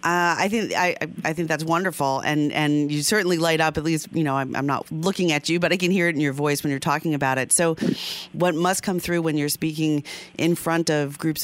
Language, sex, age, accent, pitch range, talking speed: English, female, 40-59, American, 135-165 Hz, 255 wpm